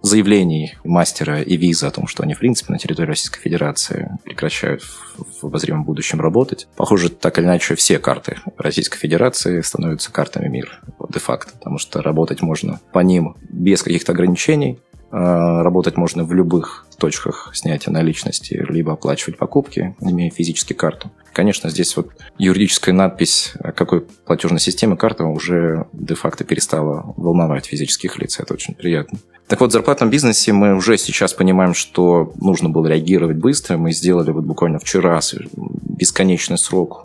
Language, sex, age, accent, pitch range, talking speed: Russian, male, 20-39, native, 80-95 Hz, 150 wpm